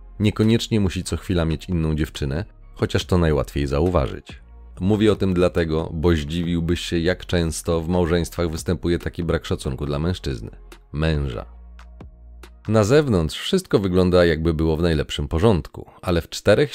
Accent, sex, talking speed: native, male, 145 wpm